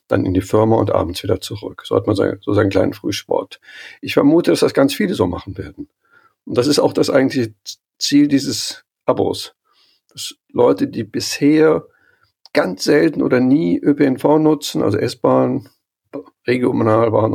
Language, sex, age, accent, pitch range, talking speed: German, male, 50-69, German, 105-170 Hz, 160 wpm